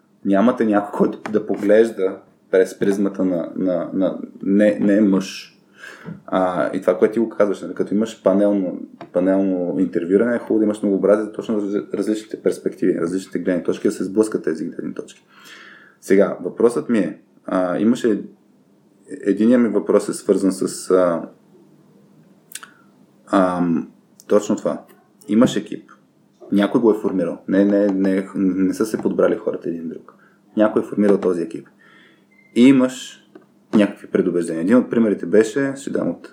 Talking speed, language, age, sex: 155 wpm, Bulgarian, 20-39, male